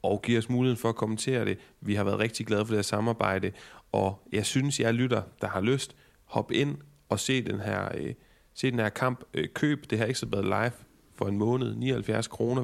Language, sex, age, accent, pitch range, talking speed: Danish, male, 30-49, native, 105-125 Hz, 240 wpm